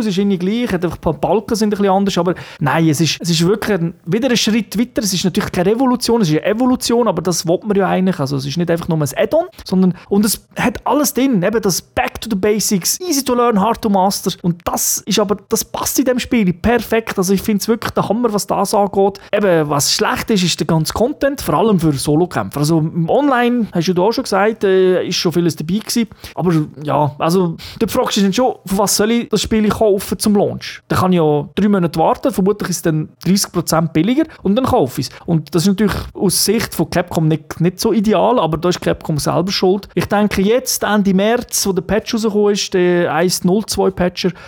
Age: 30-49